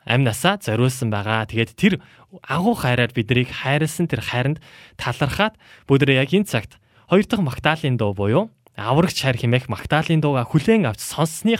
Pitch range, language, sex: 115-145 Hz, Korean, male